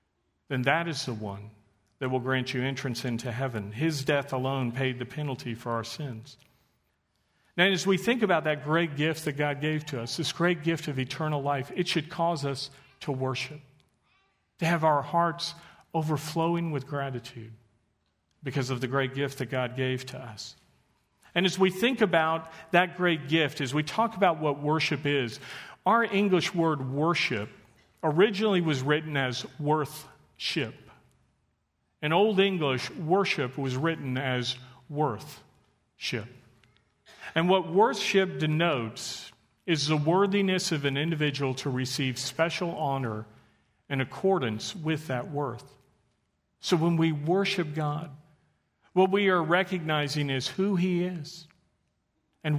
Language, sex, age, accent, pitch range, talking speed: English, male, 50-69, American, 130-165 Hz, 150 wpm